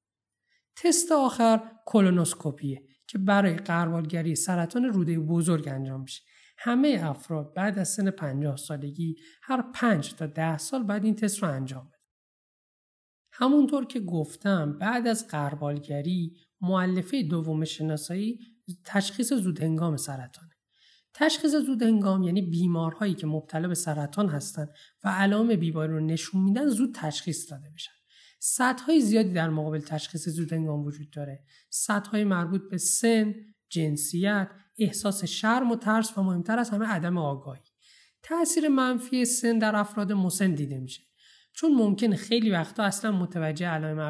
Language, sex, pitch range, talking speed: Persian, male, 155-220 Hz, 135 wpm